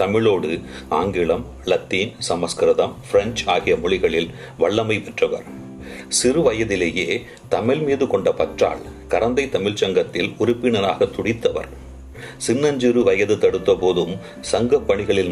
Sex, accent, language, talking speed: male, native, Tamil, 100 wpm